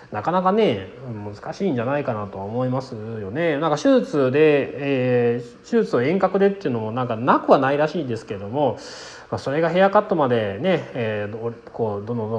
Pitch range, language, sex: 110-165 Hz, Japanese, male